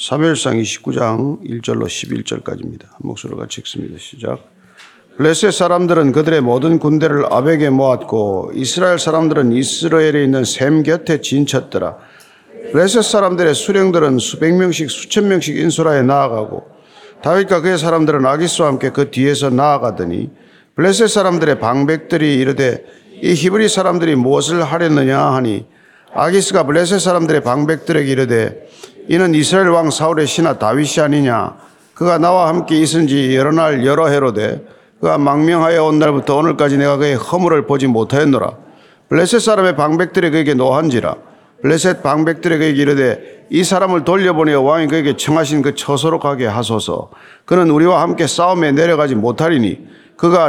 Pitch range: 140-170 Hz